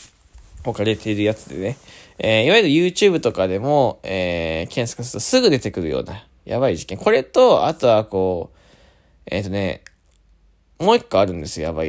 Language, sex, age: Japanese, male, 20-39